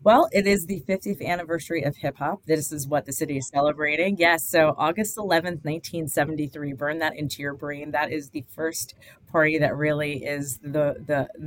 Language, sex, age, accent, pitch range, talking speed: English, female, 30-49, American, 135-155 Hz, 185 wpm